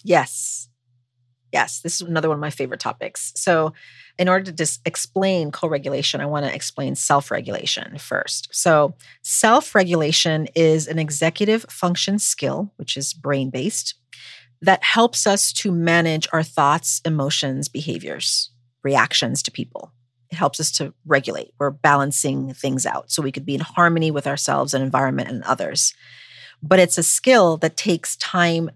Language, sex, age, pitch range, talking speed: English, female, 40-59, 140-170 Hz, 150 wpm